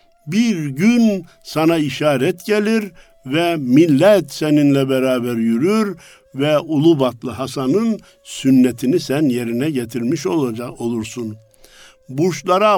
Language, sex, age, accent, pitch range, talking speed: Turkish, male, 60-79, native, 130-190 Hz, 90 wpm